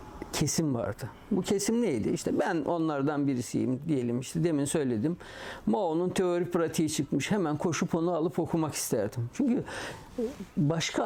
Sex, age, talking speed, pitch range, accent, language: male, 60-79, 135 wpm, 140-175 Hz, native, Turkish